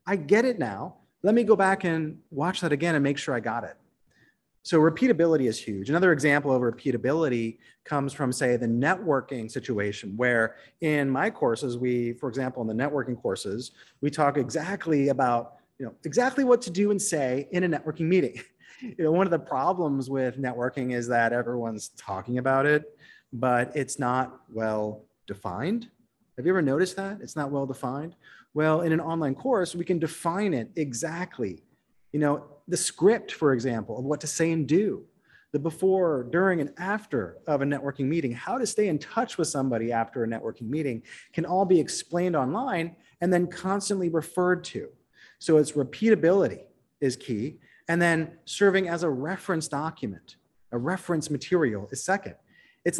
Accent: American